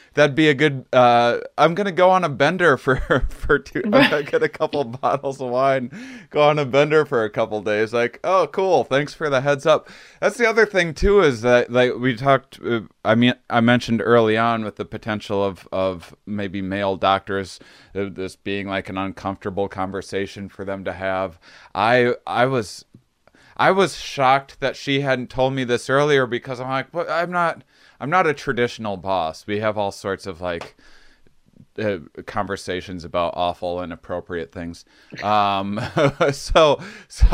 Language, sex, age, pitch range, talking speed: English, male, 20-39, 100-140 Hz, 185 wpm